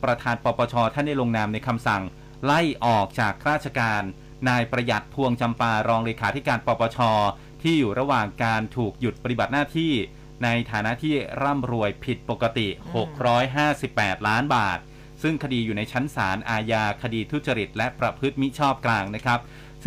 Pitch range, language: 115-145 Hz, Thai